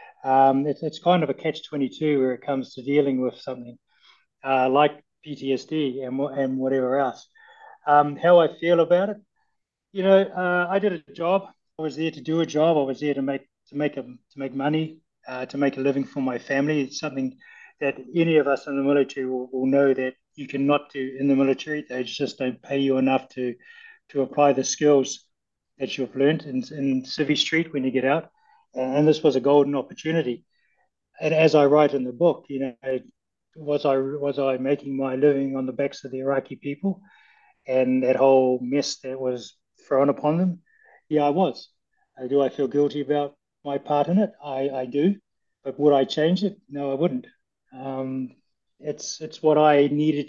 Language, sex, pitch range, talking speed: English, male, 130-150 Hz, 200 wpm